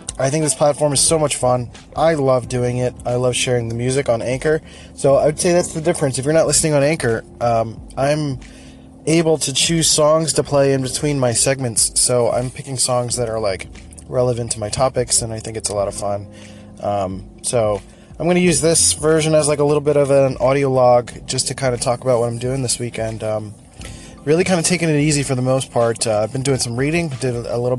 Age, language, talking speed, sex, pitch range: 20-39, English, 240 wpm, male, 115-140 Hz